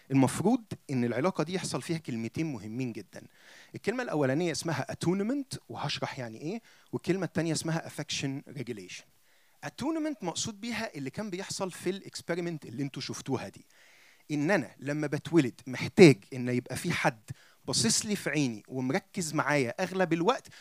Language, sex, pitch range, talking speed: Arabic, male, 140-195 Hz, 145 wpm